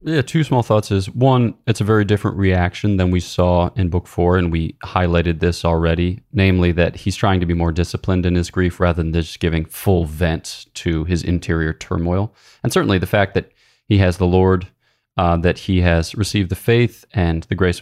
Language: English